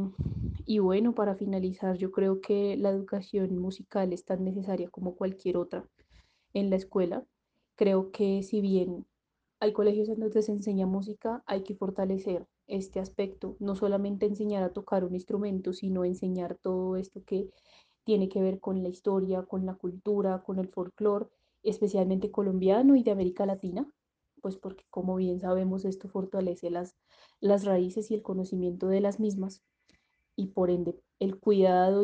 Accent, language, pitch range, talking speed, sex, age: Colombian, Spanish, 185-200 Hz, 160 wpm, female, 20-39